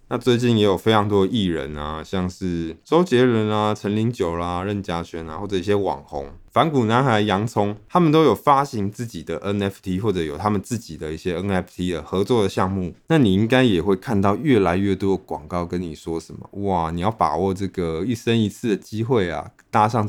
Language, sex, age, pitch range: Chinese, male, 20-39, 90-115 Hz